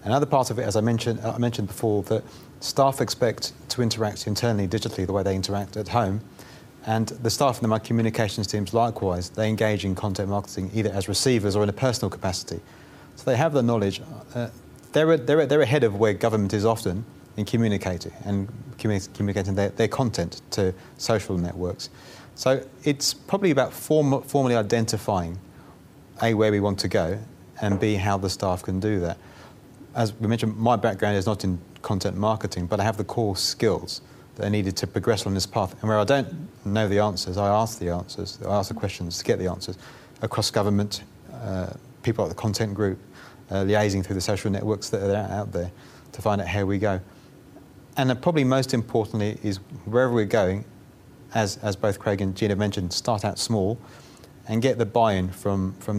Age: 30-49